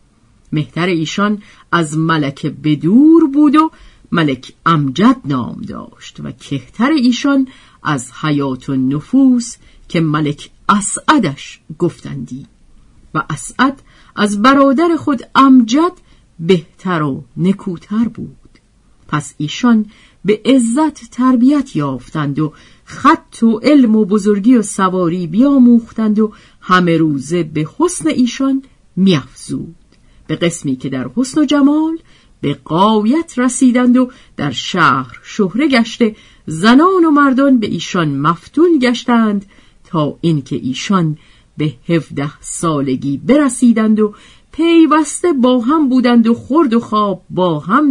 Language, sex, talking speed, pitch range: Persian, female, 120 wpm, 155-255 Hz